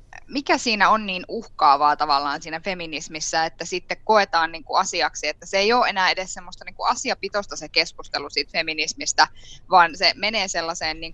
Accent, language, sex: native, Finnish, female